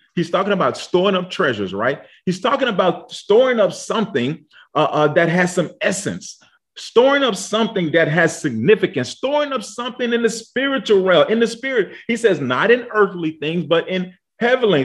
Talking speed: 180 wpm